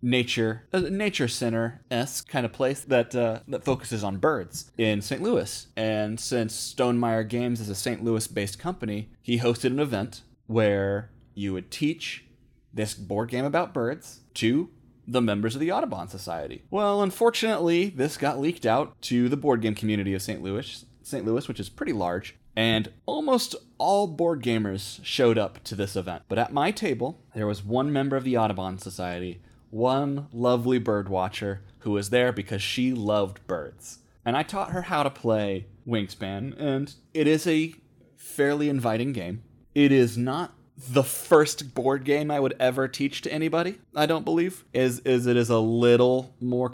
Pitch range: 110-140 Hz